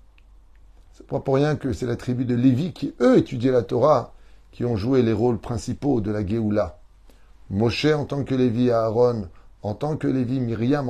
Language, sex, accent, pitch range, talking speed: French, male, French, 100-130 Hz, 195 wpm